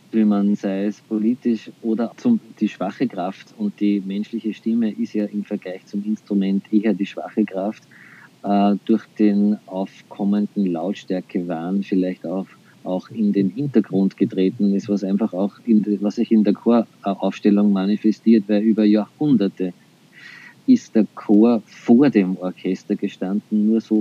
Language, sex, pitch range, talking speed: German, male, 95-105 Hz, 150 wpm